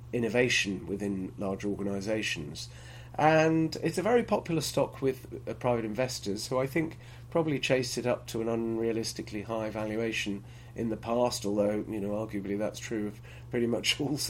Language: English